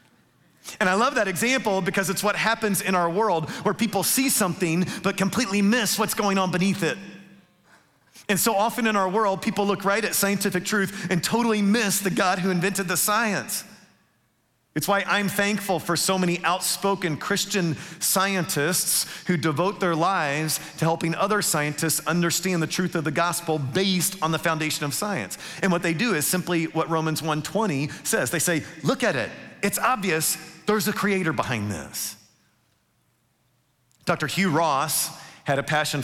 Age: 40-59